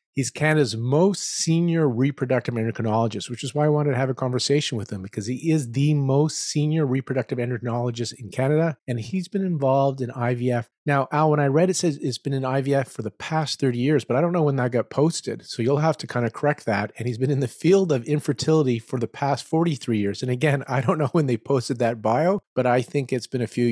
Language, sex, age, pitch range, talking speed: English, male, 40-59, 115-145 Hz, 245 wpm